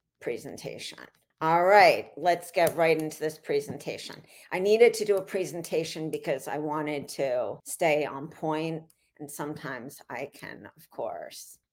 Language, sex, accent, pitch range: English, female, American, 150-170 Hz